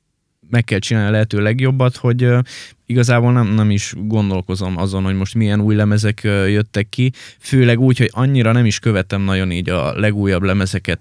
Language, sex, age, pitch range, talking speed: Hungarian, male, 20-39, 100-120 Hz, 185 wpm